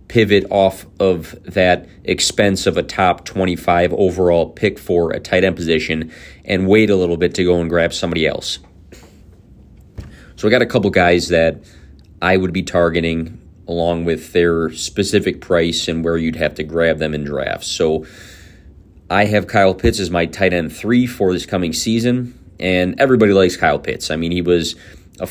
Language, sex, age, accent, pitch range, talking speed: English, male, 30-49, American, 85-100 Hz, 180 wpm